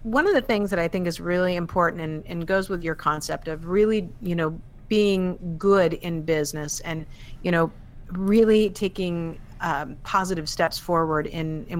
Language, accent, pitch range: English, American, 155-190 Hz